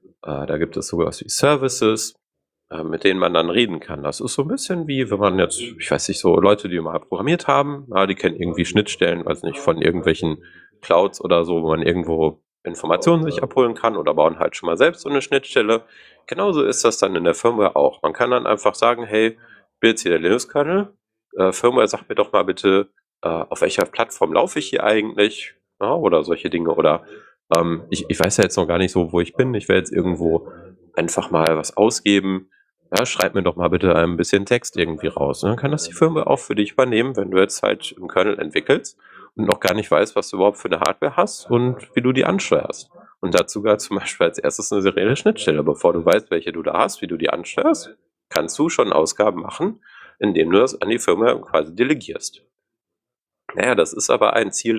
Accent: German